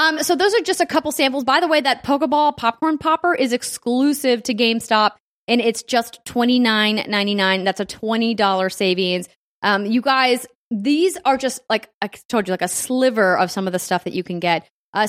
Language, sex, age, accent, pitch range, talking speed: English, female, 20-39, American, 195-245 Hz, 200 wpm